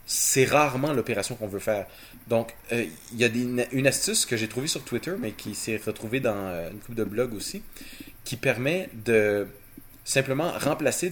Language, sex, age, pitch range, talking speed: French, male, 30-49, 110-135 Hz, 185 wpm